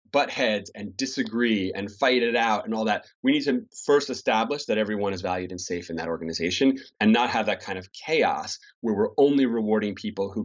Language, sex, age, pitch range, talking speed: English, male, 30-49, 105-145 Hz, 220 wpm